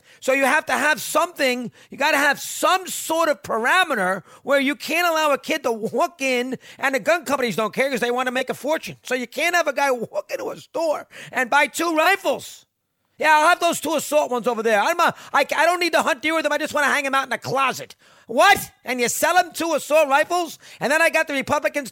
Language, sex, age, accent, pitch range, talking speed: English, male, 40-59, American, 230-295 Hz, 255 wpm